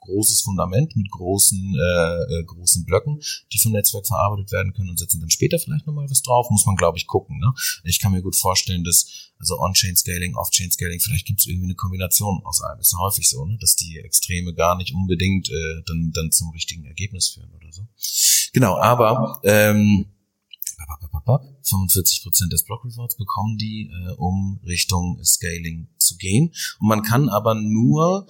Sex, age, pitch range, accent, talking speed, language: male, 30-49, 90-115 Hz, German, 180 wpm, German